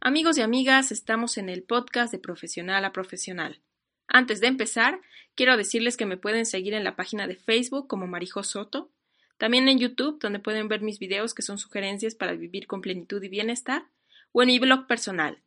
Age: 20-39